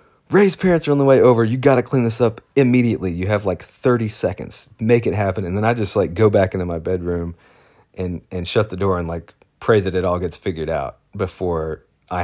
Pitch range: 95-120 Hz